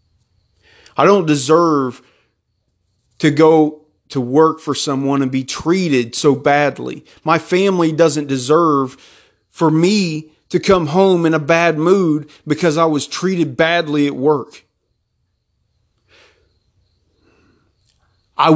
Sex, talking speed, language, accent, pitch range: male, 115 wpm, English, American, 135-190 Hz